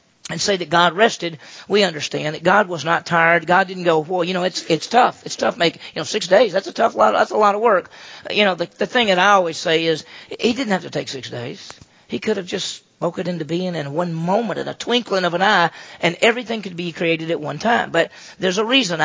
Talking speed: 260 wpm